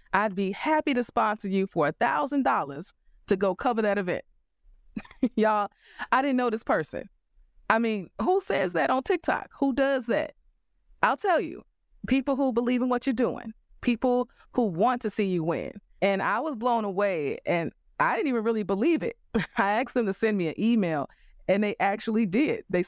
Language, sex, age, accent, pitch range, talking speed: English, female, 30-49, American, 185-245 Hz, 185 wpm